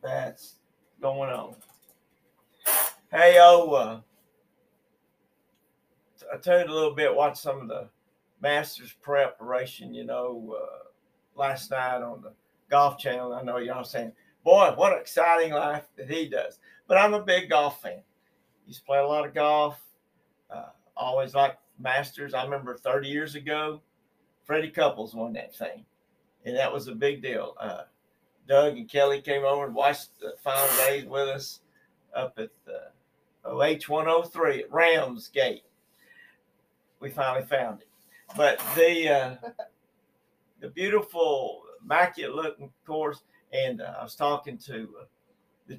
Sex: male